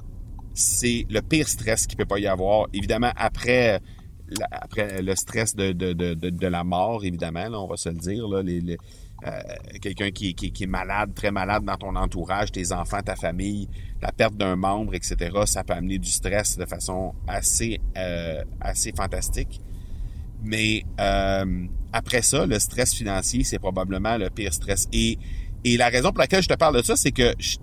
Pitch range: 95-115 Hz